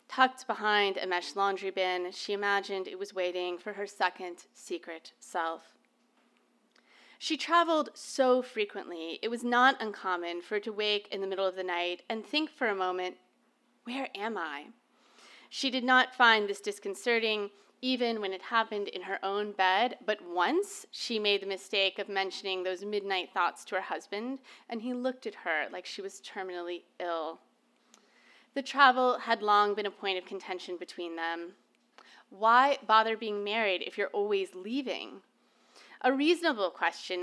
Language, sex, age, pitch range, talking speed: English, female, 30-49, 190-245 Hz, 165 wpm